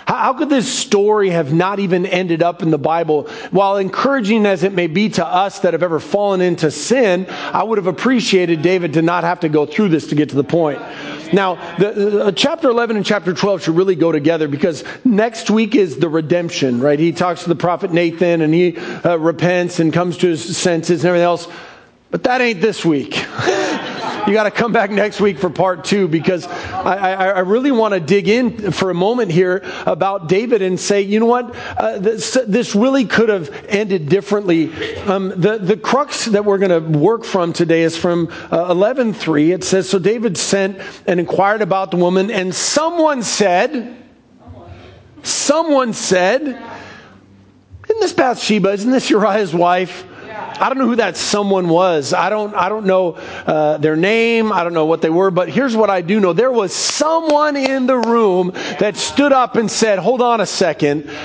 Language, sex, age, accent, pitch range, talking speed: English, male, 40-59, American, 175-230 Hz, 195 wpm